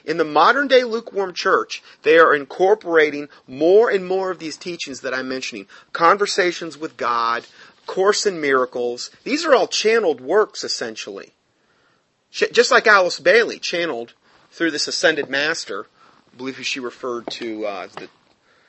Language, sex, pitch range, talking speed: English, male, 130-200 Hz, 145 wpm